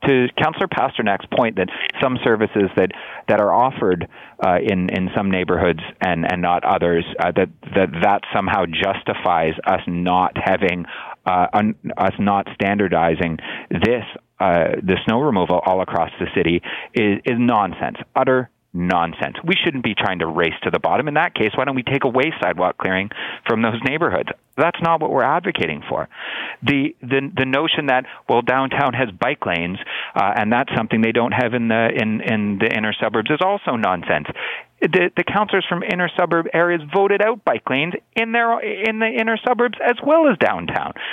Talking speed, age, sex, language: 180 wpm, 30-49, male, English